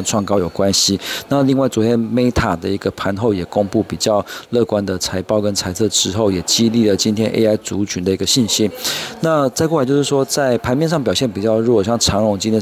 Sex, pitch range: male, 95-115 Hz